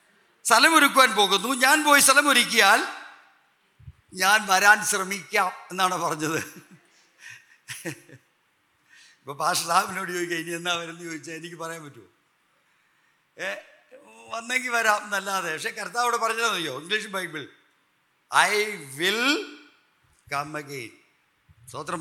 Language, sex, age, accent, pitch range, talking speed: Malayalam, male, 50-69, native, 175-260 Hz, 75 wpm